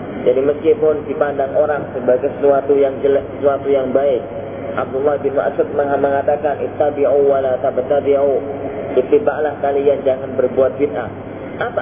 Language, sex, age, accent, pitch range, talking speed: Indonesian, male, 30-49, native, 140-160 Hz, 125 wpm